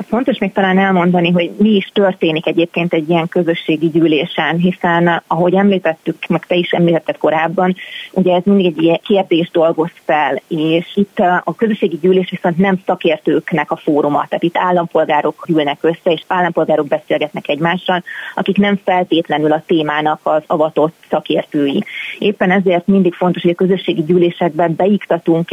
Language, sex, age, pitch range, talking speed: Hungarian, female, 30-49, 160-185 Hz, 155 wpm